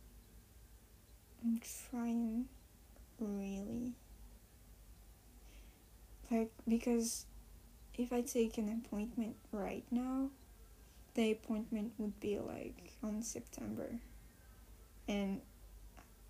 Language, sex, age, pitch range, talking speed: English, female, 10-29, 215-245 Hz, 75 wpm